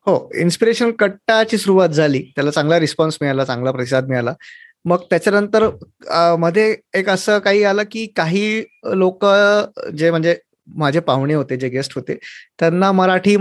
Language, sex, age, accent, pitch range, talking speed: Marathi, male, 20-39, native, 145-185 Hz, 60 wpm